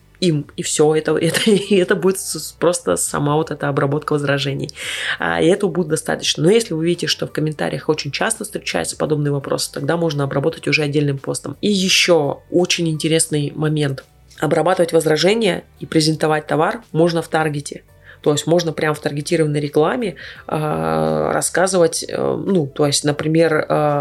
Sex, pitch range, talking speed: female, 145-170 Hz, 160 wpm